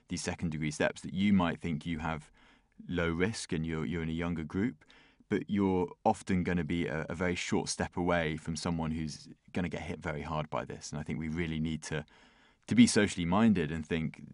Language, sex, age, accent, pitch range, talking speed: Portuguese, male, 20-39, British, 80-90 Hz, 225 wpm